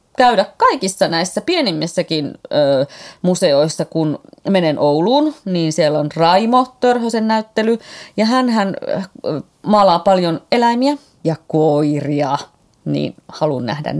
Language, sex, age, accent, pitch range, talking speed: Finnish, female, 30-49, native, 155-220 Hz, 115 wpm